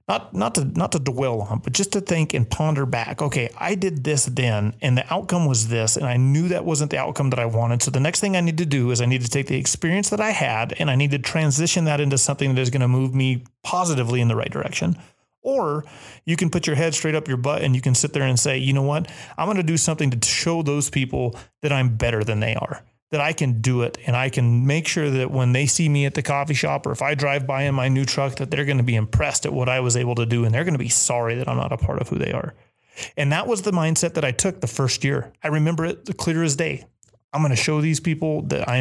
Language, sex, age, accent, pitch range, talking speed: English, male, 30-49, American, 125-155 Hz, 290 wpm